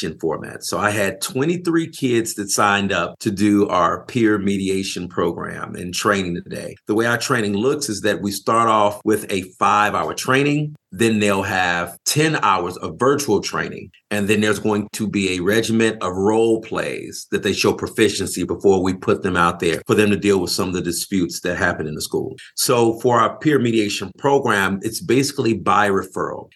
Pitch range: 95-125 Hz